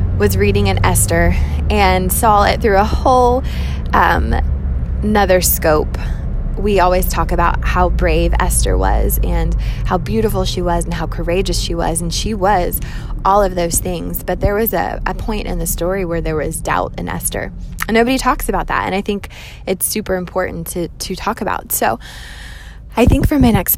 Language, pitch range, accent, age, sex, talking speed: English, 160-205 Hz, American, 20-39, female, 185 wpm